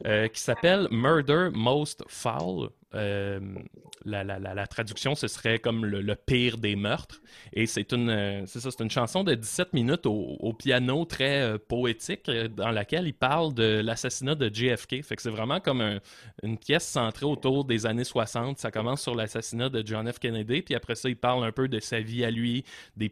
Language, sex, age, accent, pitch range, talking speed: French, male, 20-39, Canadian, 110-135 Hz, 210 wpm